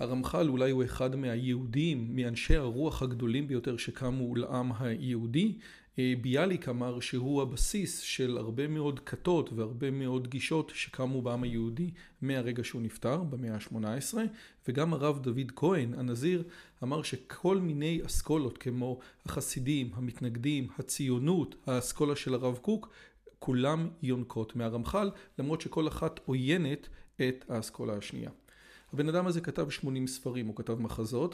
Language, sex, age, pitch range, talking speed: Hebrew, male, 40-59, 120-160 Hz, 130 wpm